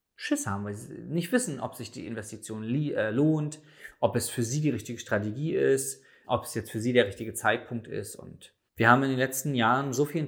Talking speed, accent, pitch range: 230 wpm, German, 115-135 Hz